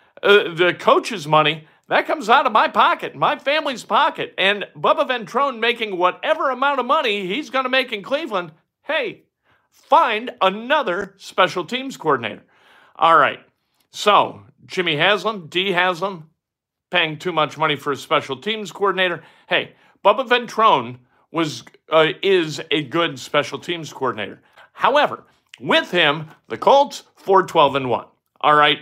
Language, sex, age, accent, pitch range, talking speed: English, male, 50-69, American, 140-195 Hz, 140 wpm